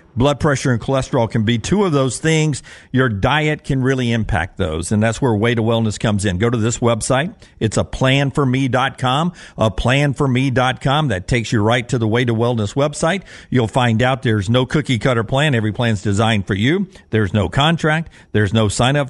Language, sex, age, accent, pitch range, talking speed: English, male, 50-69, American, 110-140 Hz, 190 wpm